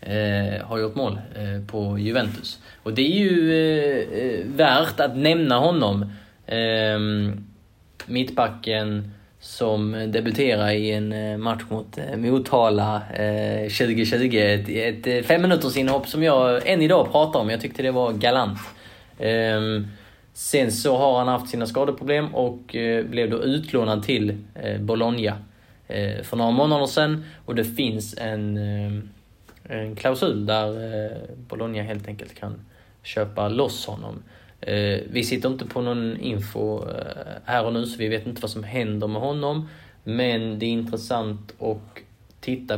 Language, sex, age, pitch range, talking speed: Swedish, male, 20-39, 105-120 Hz, 145 wpm